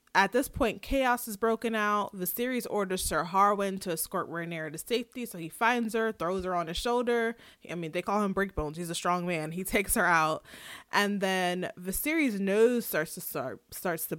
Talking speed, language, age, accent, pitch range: 205 wpm, English, 20-39, American, 170-230 Hz